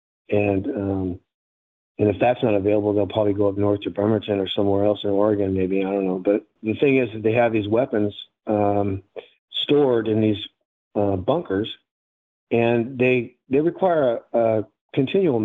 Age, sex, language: 40-59, male, English